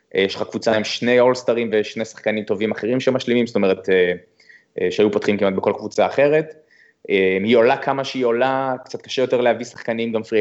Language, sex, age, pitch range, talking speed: Hebrew, male, 20-39, 115-155 Hz, 180 wpm